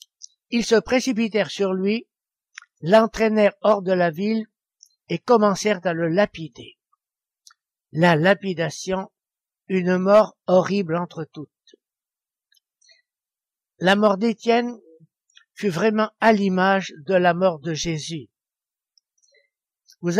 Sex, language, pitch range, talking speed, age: male, French, 175-215 Hz, 105 wpm, 60-79